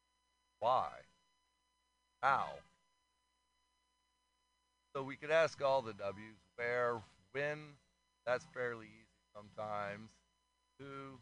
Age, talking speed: 40-59, 85 wpm